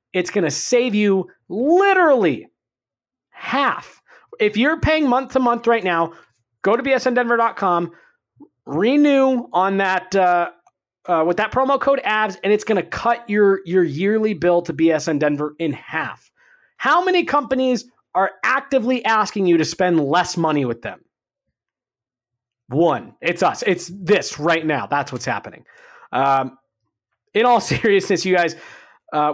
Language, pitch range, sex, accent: English, 165-235 Hz, male, American